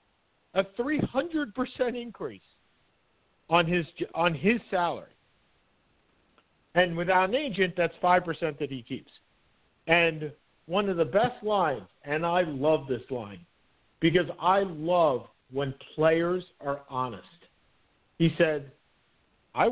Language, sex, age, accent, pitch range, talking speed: English, male, 50-69, American, 130-175 Hz, 115 wpm